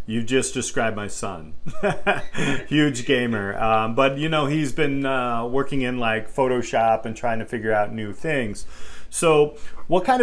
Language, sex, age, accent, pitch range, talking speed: English, male, 40-59, American, 110-135 Hz, 165 wpm